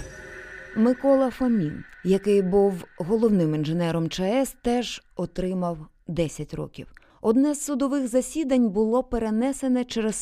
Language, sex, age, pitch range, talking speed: Ukrainian, female, 20-39, 170-245 Hz, 105 wpm